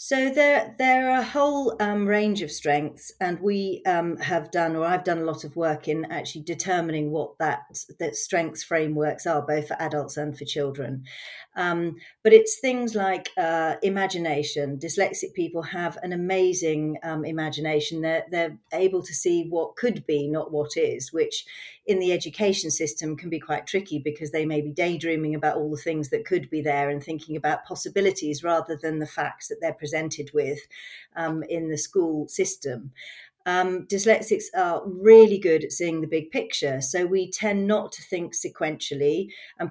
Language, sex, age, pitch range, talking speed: English, female, 40-59, 155-190 Hz, 185 wpm